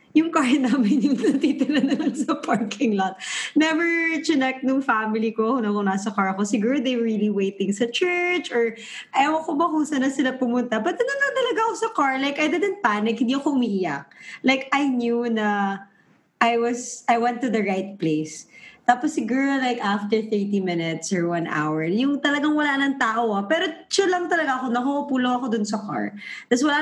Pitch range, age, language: 220-315 Hz, 20-39, English